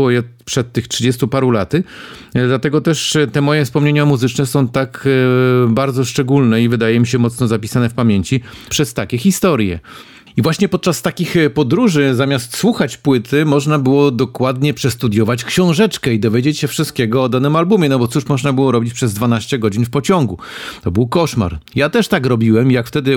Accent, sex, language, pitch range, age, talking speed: native, male, Polish, 115-150 Hz, 40-59, 170 wpm